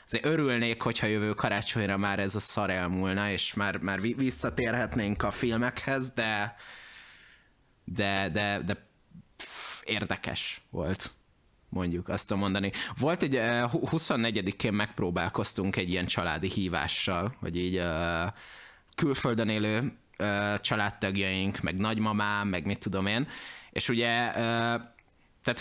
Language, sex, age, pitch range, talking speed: Hungarian, male, 20-39, 100-120 Hz, 110 wpm